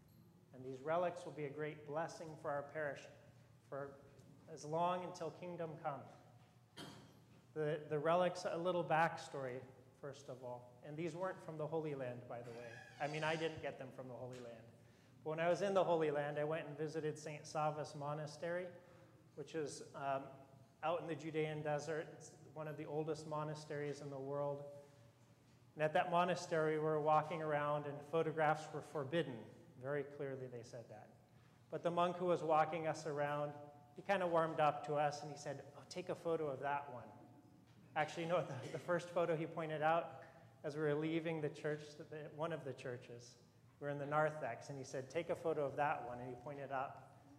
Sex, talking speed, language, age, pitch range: male, 200 wpm, English, 30-49, 135-160 Hz